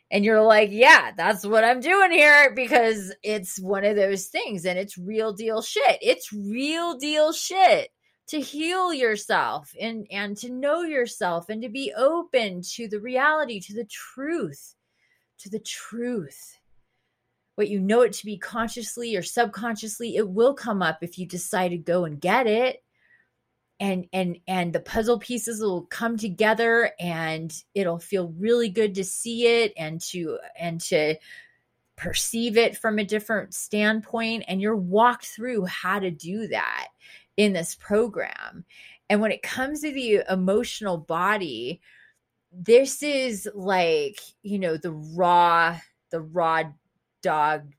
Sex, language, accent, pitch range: female, English, American, 180-240 Hz